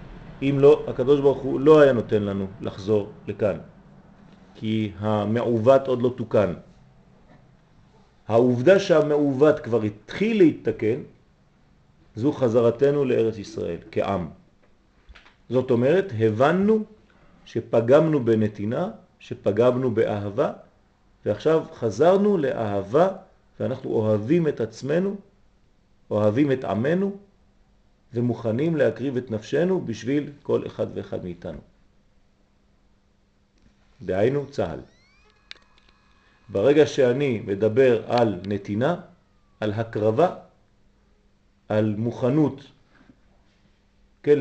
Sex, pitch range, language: male, 100-135 Hz, French